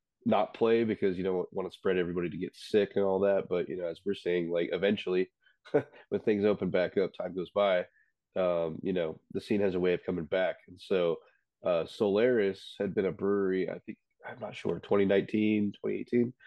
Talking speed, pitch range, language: 210 wpm, 90-105 Hz, English